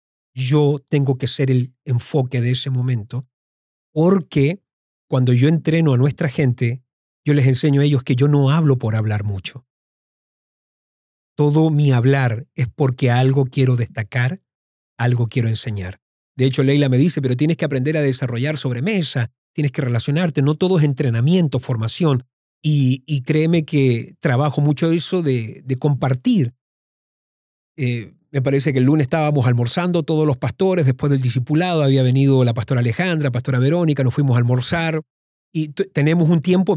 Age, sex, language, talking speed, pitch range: 40-59, male, Spanish, 165 wpm, 125-150 Hz